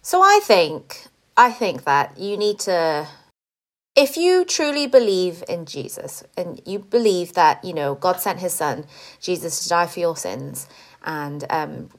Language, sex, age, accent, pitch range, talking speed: English, female, 30-49, British, 165-270 Hz, 165 wpm